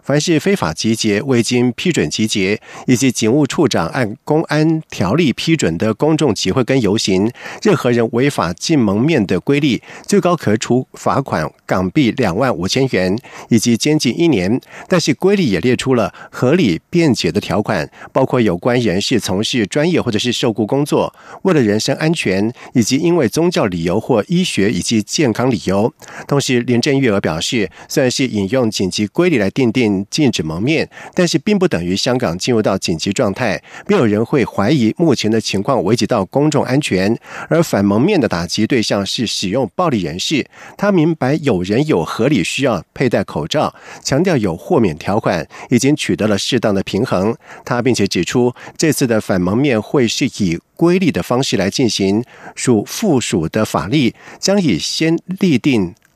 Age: 50-69